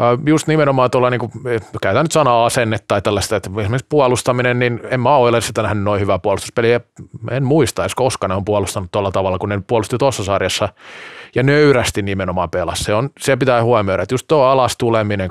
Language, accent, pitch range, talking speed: Finnish, native, 100-130 Hz, 190 wpm